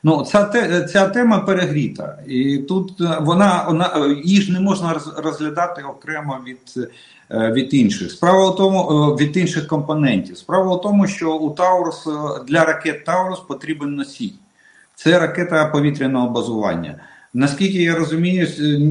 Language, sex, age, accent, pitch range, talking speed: Russian, male, 50-69, native, 125-165 Hz, 130 wpm